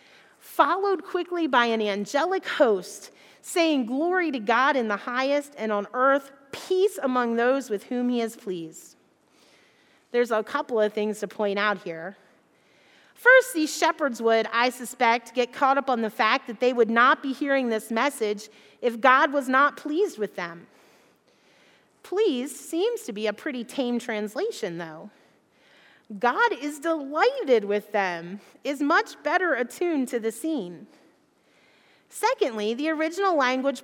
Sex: female